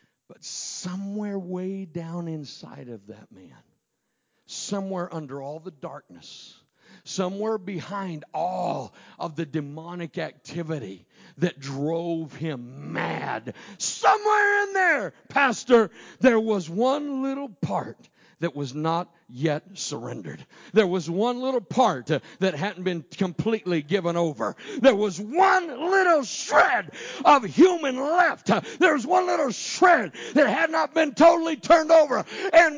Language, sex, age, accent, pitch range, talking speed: English, male, 50-69, American, 180-300 Hz, 130 wpm